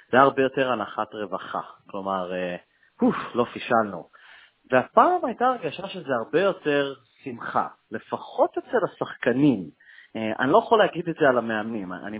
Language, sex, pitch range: Hebrew, male, 115-160 Hz